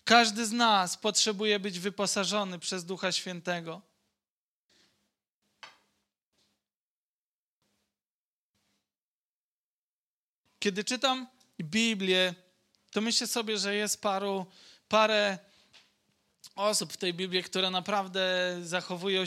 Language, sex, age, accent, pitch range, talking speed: Polish, male, 20-39, native, 175-200 Hz, 80 wpm